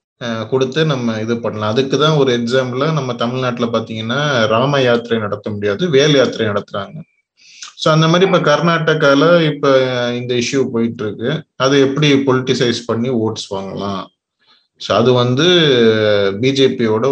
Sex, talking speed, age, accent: male, 110 wpm, 30-49, native